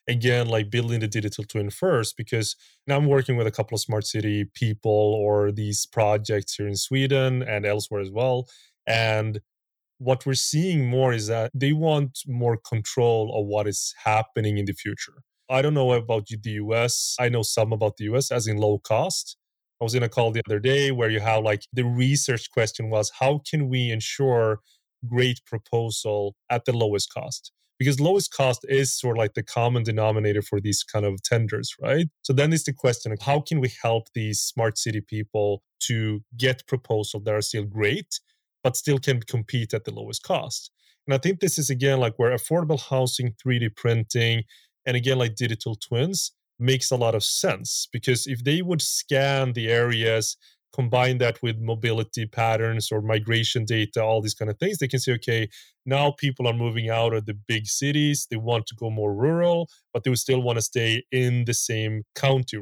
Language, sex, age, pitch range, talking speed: English, male, 30-49, 110-130 Hz, 195 wpm